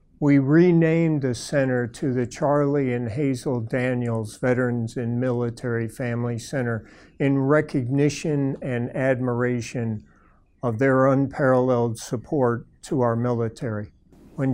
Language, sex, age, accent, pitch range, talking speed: English, male, 50-69, American, 120-135 Hz, 110 wpm